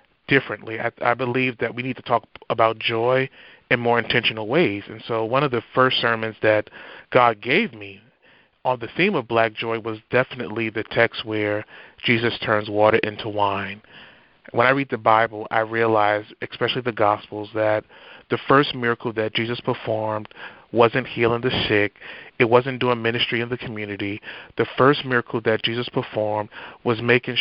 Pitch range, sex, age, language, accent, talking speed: 110-125 Hz, male, 30-49, English, American, 170 wpm